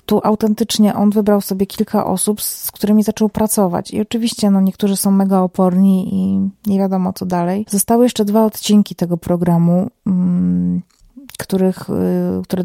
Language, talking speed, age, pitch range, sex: Polish, 135 wpm, 30-49, 185-210 Hz, female